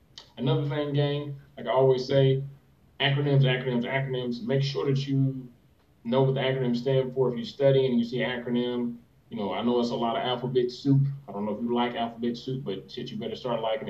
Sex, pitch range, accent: male, 120-140 Hz, American